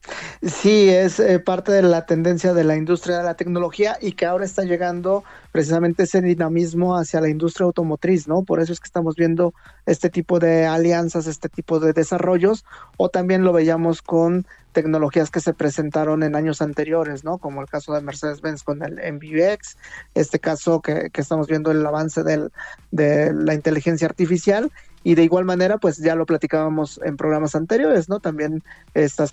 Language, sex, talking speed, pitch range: Spanish, male, 180 wpm, 155-175 Hz